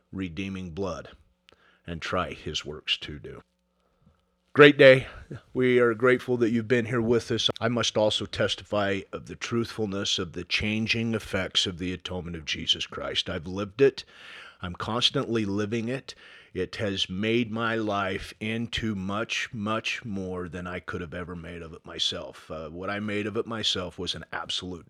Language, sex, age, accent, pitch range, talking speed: English, male, 40-59, American, 95-115 Hz, 170 wpm